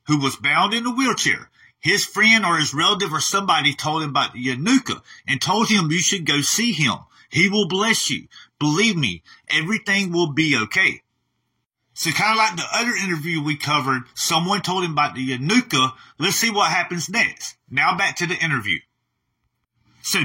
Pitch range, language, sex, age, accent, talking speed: 145-220 Hz, English, male, 40-59, American, 185 wpm